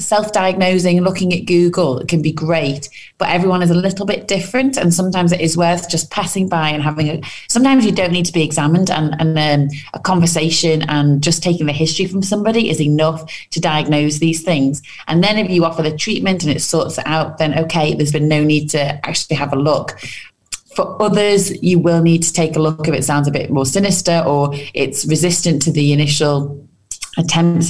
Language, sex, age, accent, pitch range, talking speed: English, female, 30-49, British, 150-180 Hz, 210 wpm